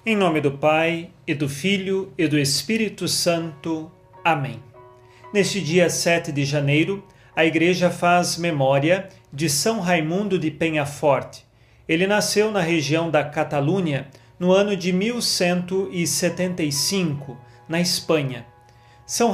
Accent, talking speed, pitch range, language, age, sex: Brazilian, 120 wpm, 150-195 Hz, Portuguese, 40-59, male